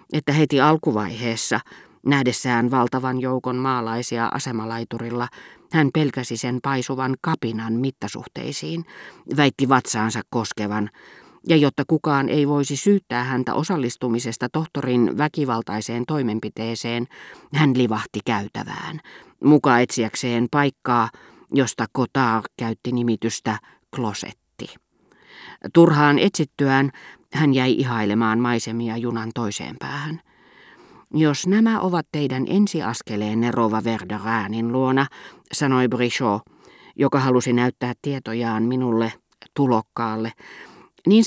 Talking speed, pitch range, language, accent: 95 wpm, 115-145 Hz, Finnish, native